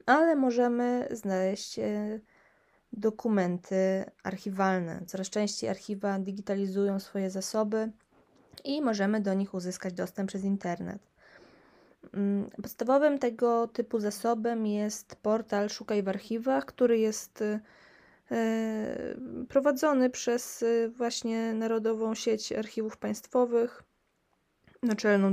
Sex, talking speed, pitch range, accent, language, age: female, 90 wpm, 200-245 Hz, native, Polish, 20-39